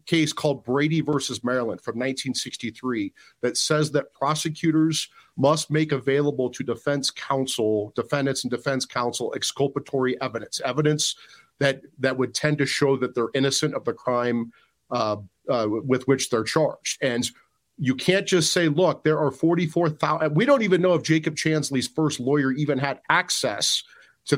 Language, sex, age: English, male, 40-59